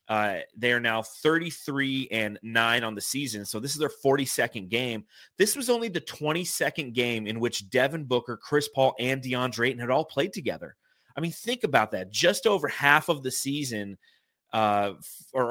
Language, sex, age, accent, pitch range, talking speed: English, male, 30-49, American, 115-150 Hz, 190 wpm